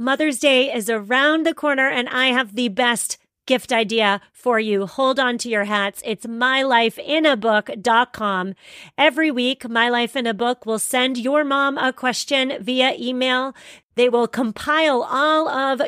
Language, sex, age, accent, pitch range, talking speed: English, female, 40-59, American, 210-265 Hz, 160 wpm